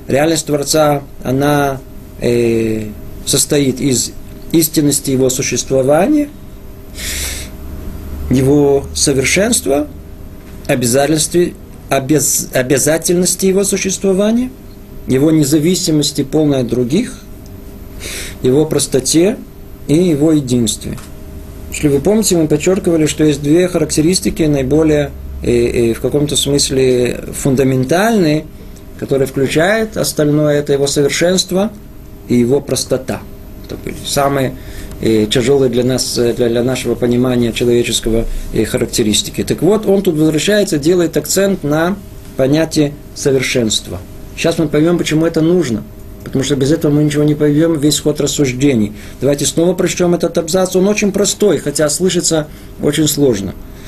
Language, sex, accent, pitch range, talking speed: Russian, male, native, 120-160 Hz, 110 wpm